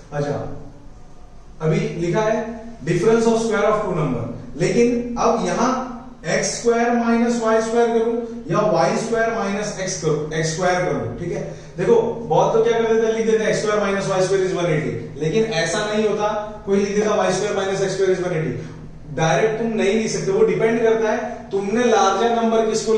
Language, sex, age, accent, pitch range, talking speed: English, male, 30-49, Indian, 155-220 Hz, 175 wpm